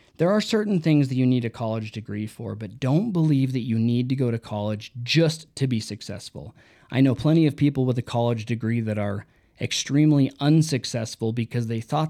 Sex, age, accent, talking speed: male, 20-39, American, 205 wpm